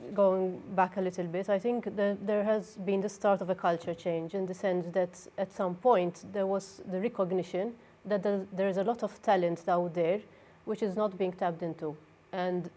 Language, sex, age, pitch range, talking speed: English, female, 30-49, 175-205 Hz, 200 wpm